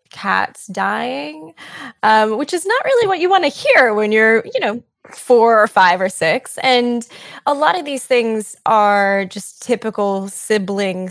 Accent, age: American, 10-29